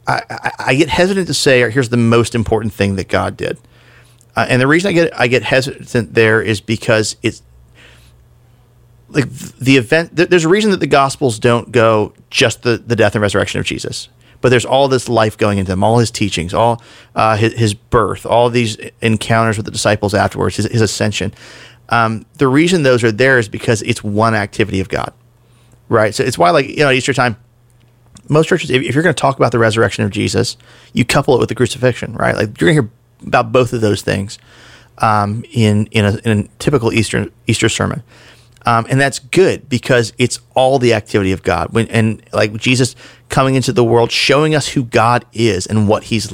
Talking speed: 205 wpm